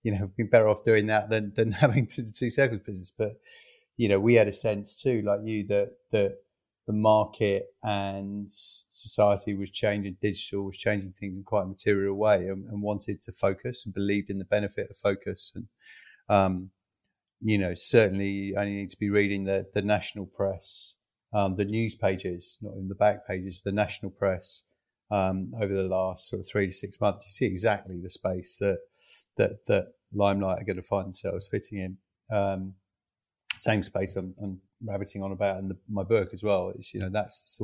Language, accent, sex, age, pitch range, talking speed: English, British, male, 30-49, 100-115 Hz, 200 wpm